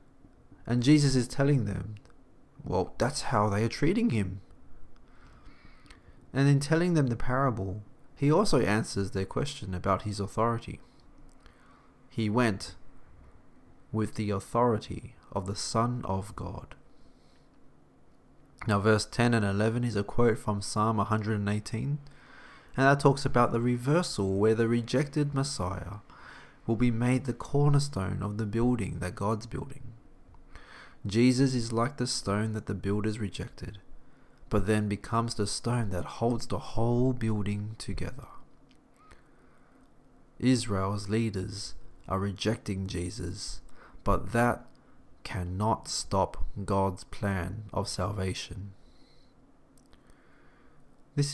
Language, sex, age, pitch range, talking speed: English, male, 30-49, 100-125 Hz, 120 wpm